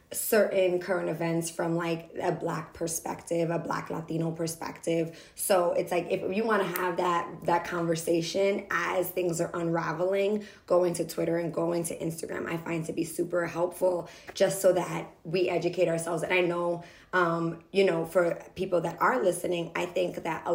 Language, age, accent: English, 20-39, American